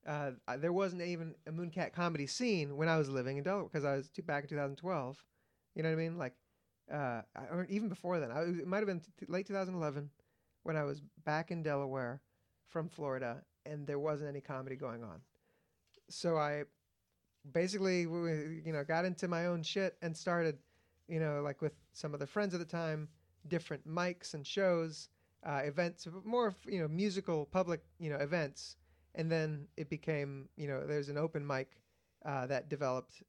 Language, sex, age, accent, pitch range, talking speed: English, male, 40-59, American, 140-170 Hz, 195 wpm